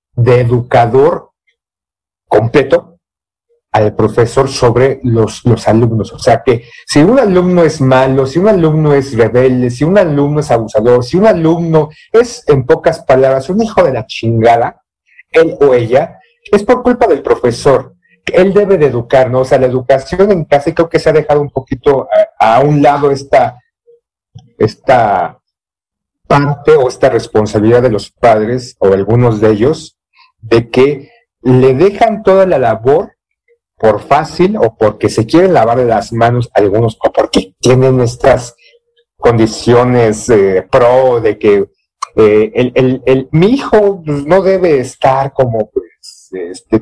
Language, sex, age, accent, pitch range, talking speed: Spanish, male, 50-69, Mexican, 120-180 Hz, 155 wpm